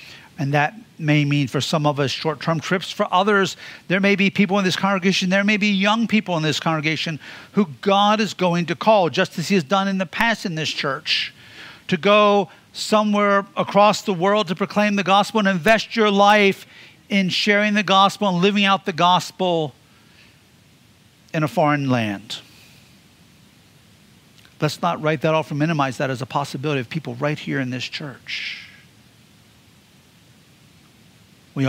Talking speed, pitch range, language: 170 wpm, 150-200 Hz, English